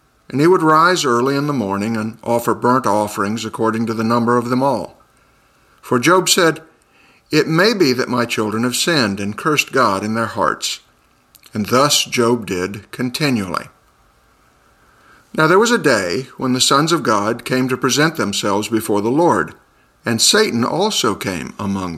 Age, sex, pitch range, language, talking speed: 50-69, male, 105-130 Hz, English, 170 wpm